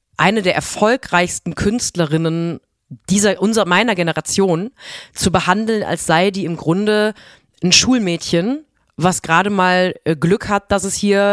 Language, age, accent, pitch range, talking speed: German, 30-49, German, 165-210 Hz, 130 wpm